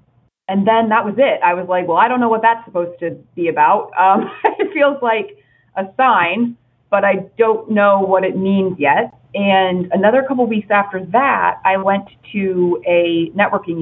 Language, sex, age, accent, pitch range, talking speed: English, female, 30-49, American, 155-195 Hz, 190 wpm